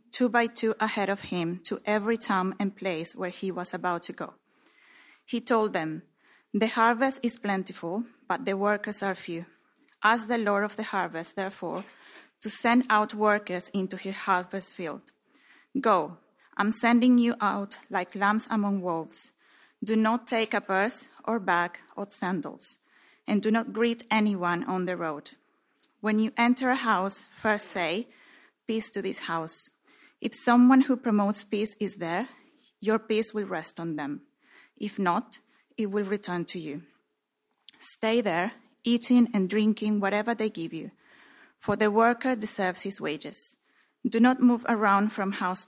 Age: 20-39